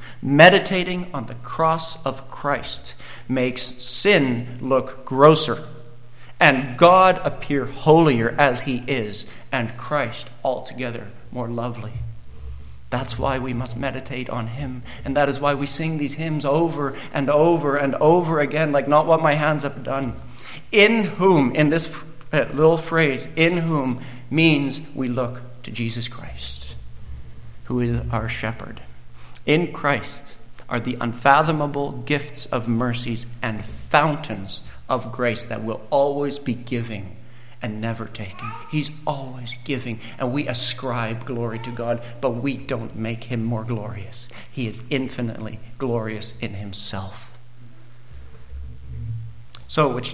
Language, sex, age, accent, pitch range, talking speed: English, male, 50-69, American, 120-145 Hz, 135 wpm